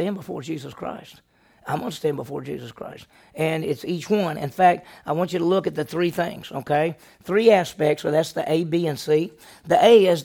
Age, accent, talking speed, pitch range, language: 50-69, American, 230 wpm, 155-200 Hz, English